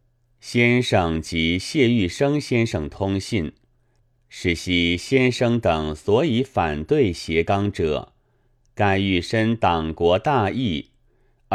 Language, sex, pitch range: Chinese, male, 95-125 Hz